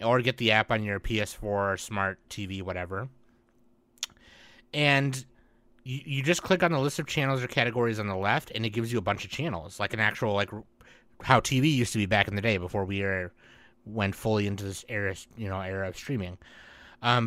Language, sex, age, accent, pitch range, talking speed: English, male, 30-49, American, 105-125 Hz, 200 wpm